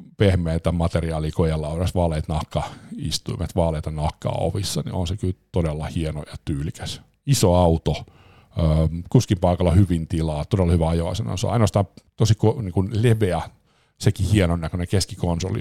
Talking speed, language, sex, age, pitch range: 125 wpm, Finnish, male, 50-69, 85-105 Hz